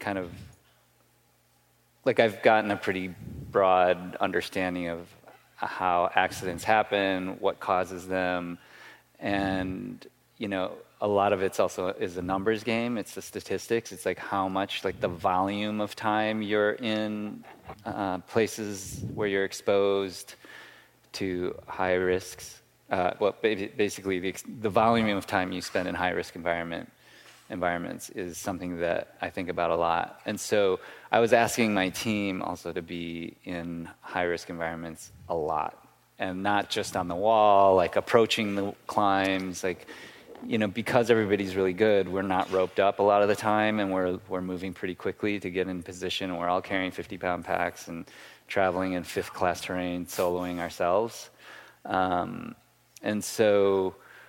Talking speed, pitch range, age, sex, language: 155 wpm, 90-105 Hz, 30-49, male, English